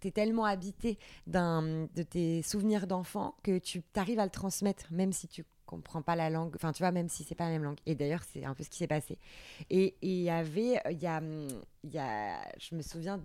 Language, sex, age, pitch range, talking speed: French, female, 20-39, 160-210 Hz, 250 wpm